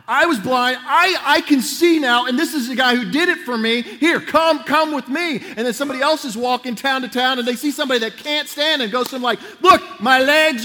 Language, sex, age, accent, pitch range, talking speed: English, male, 40-59, American, 220-290 Hz, 265 wpm